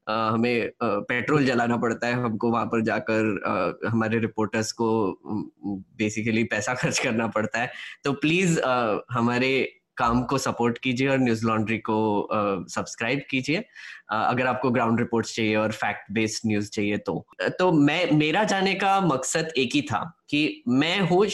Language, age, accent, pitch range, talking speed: Hindi, 10-29, native, 115-165 Hz, 150 wpm